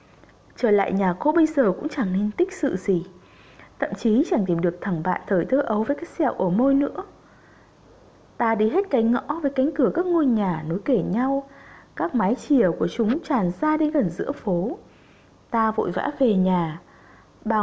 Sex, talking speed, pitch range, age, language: female, 200 wpm, 200-290 Hz, 20-39, Vietnamese